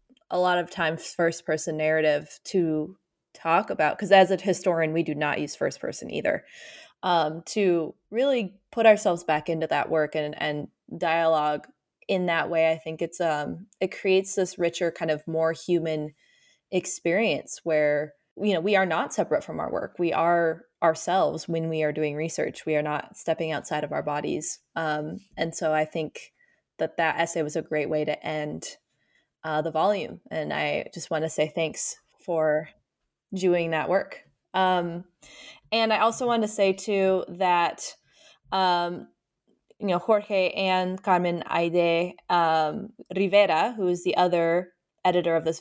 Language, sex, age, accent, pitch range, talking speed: English, female, 20-39, American, 160-185 Hz, 165 wpm